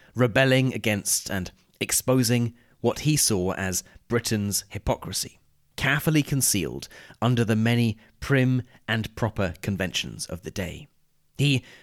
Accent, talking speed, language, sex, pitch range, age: British, 115 wpm, English, male, 95-125 Hz, 30-49